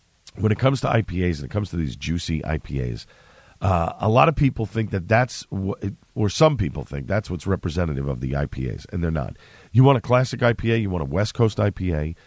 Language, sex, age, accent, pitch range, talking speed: English, male, 50-69, American, 90-125 Hz, 225 wpm